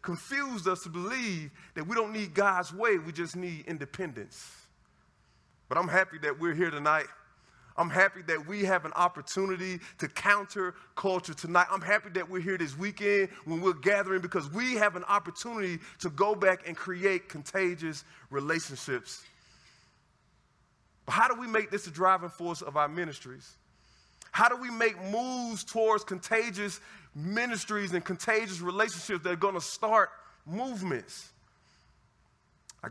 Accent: American